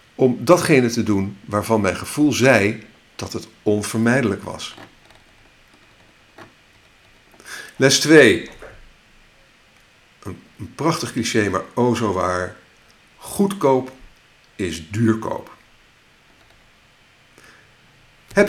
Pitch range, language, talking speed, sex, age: 100-135 Hz, Dutch, 85 wpm, male, 50-69